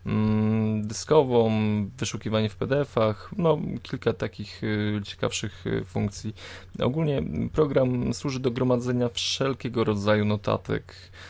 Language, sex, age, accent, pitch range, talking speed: Polish, male, 20-39, native, 100-115 Hz, 85 wpm